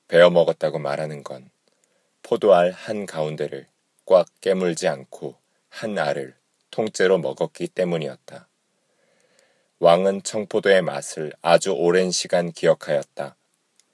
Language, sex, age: Korean, male, 40-59